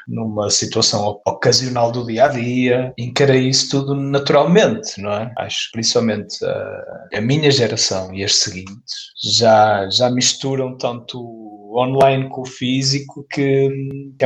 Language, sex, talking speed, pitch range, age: Portuguese, male, 140 wpm, 100-135 Hz, 20-39